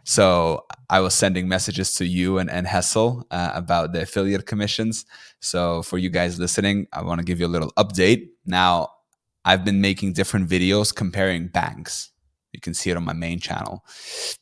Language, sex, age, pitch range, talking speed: English, male, 20-39, 90-105 Hz, 185 wpm